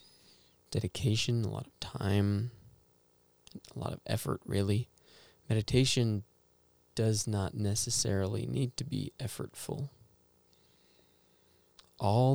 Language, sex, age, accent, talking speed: English, male, 20-39, American, 85 wpm